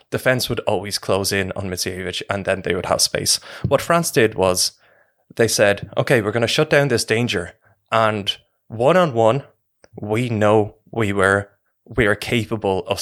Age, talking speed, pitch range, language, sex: 20-39, 180 wpm, 100-120 Hz, English, male